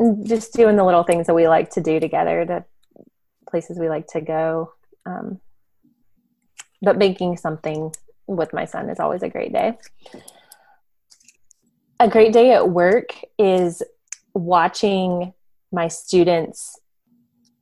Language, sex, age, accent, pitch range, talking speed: English, female, 20-39, American, 160-200 Hz, 130 wpm